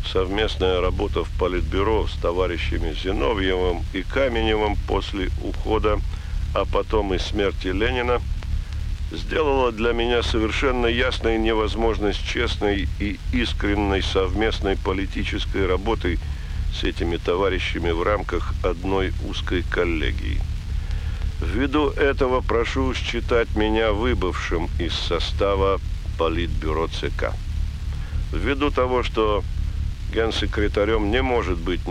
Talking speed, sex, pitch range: 100 wpm, male, 80-105 Hz